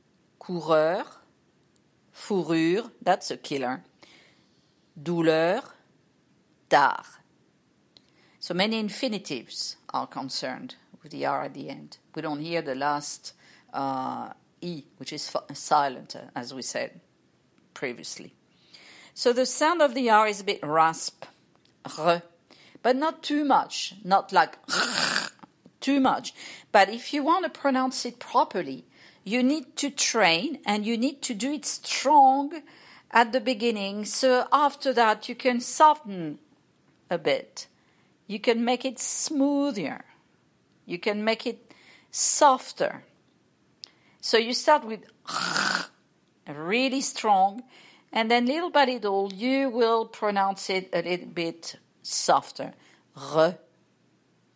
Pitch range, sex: 175-265 Hz, female